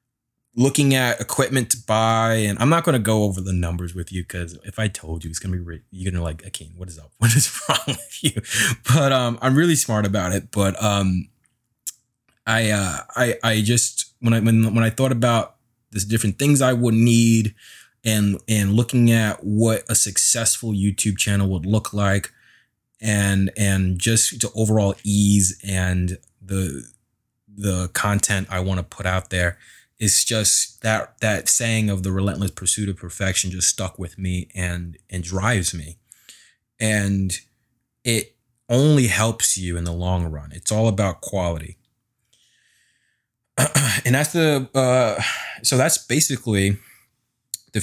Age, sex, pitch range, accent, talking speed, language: 20-39, male, 95-115 Hz, American, 165 wpm, English